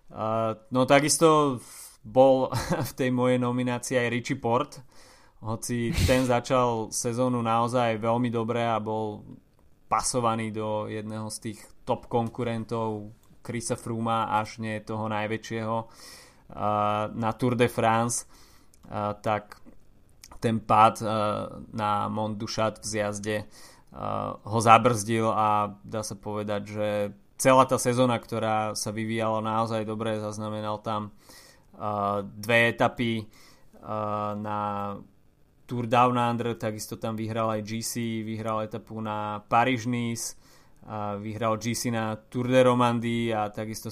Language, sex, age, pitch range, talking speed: Slovak, male, 20-39, 105-120 Hz, 120 wpm